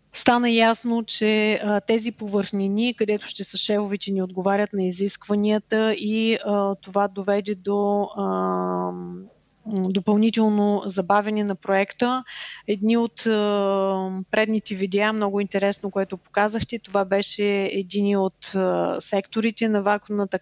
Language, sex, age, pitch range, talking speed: Bulgarian, female, 30-49, 190-210 Hz, 120 wpm